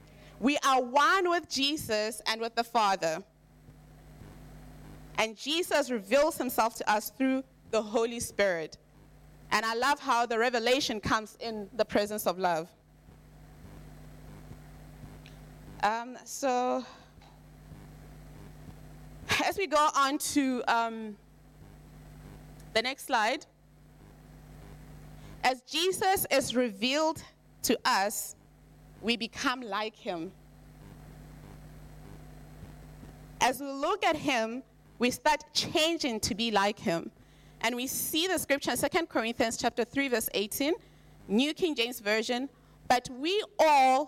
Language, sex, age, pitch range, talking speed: English, female, 20-39, 215-280 Hz, 110 wpm